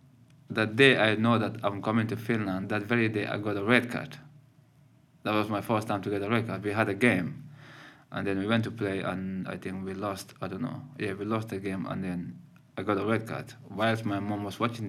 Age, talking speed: 20-39, 250 wpm